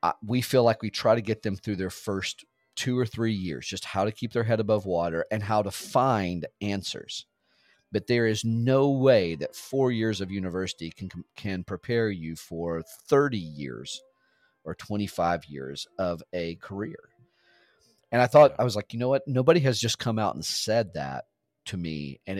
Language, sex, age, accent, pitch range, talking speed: English, male, 40-59, American, 100-130 Hz, 190 wpm